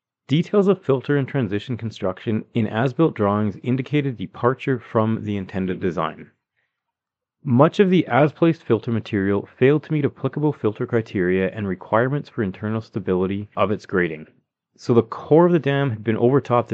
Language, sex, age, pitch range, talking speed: English, male, 30-49, 100-135 Hz, 160 wpm